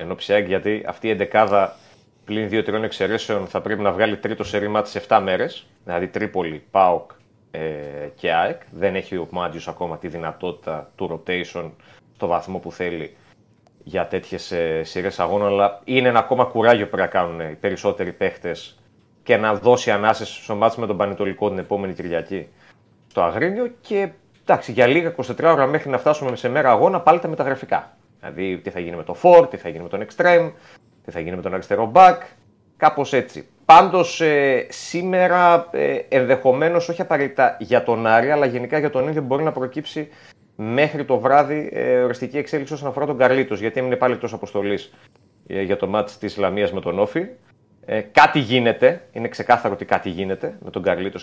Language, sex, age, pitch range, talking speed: Greek, male, 30-49, 100-145 Hz, 180 wpm